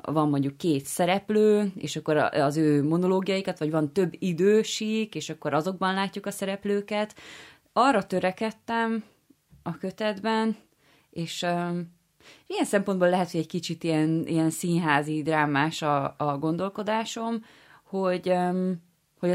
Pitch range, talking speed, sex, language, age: 155-190 Hz, 120 wpm, female, Hungarian, 20-39